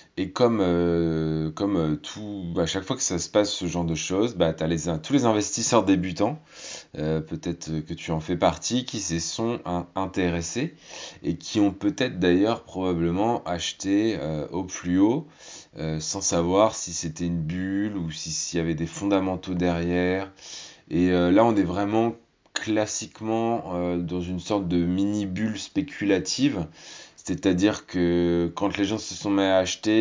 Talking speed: 170 wpm